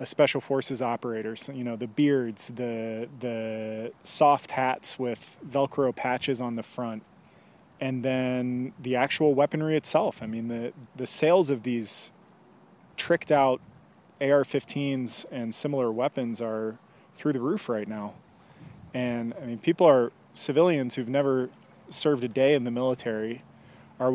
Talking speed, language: 145 wpm, English